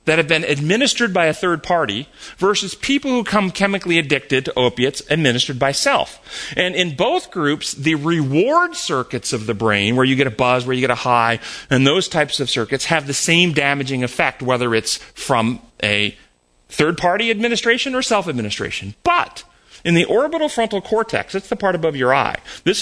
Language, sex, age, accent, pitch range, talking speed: English, male, 40-59, American, 125-195 Hz, 185 wpm